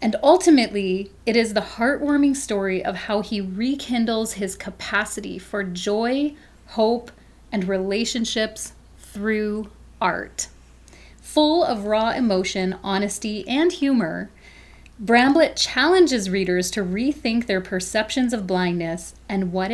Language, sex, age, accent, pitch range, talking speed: English, female, 30-49, American, 190-230 Hz, 115 wpm